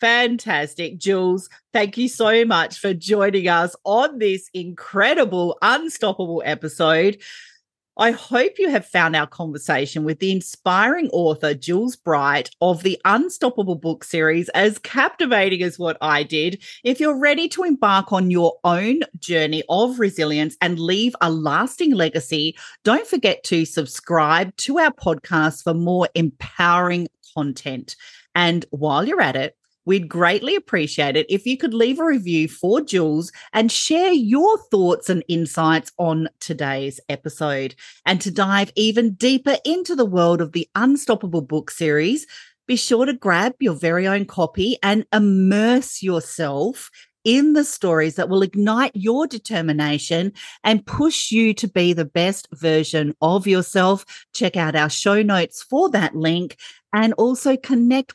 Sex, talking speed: female, 150 wpm